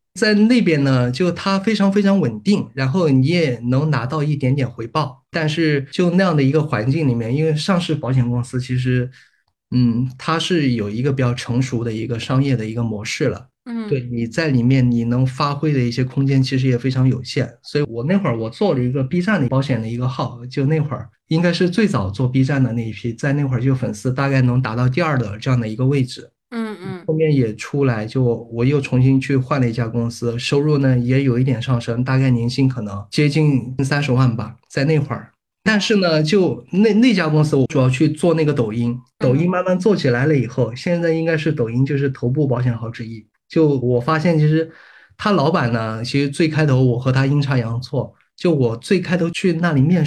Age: 20-39